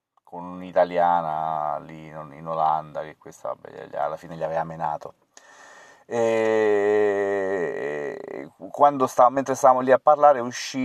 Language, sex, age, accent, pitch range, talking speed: Italian, male, 30-49, native, 90-105 Hz, 100 wpm